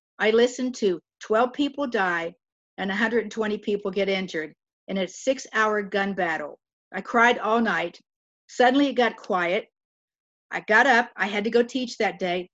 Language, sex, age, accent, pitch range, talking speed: English, female, 50-69, American, 195-240 Hz, 165 wpm